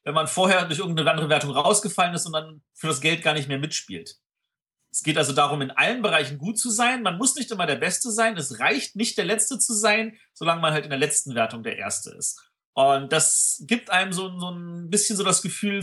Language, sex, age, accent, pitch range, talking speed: German, male, 40-59, German, 145-195 Hz, 240 wpm